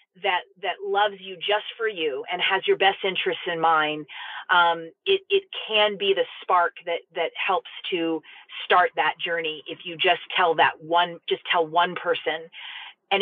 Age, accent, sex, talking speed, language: 30-49, American, female, 175 wpm, English